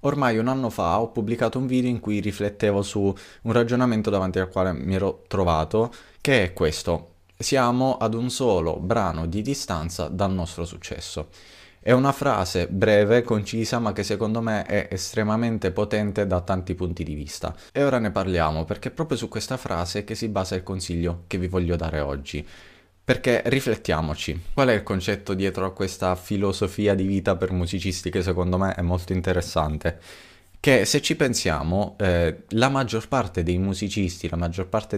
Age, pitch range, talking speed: 20-39, 90-110 Hz, 175 wpm